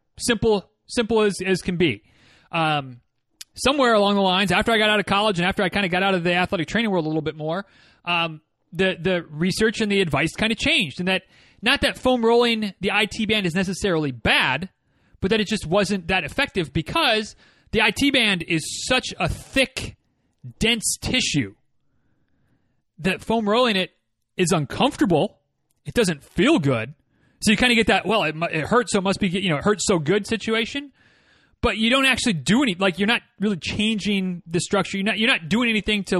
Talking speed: 205 wpm